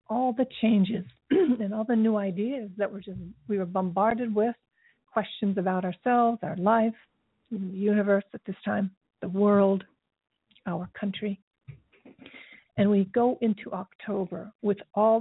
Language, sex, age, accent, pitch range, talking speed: English, female, 50-69, American, 190-220 Hz, 135 wpm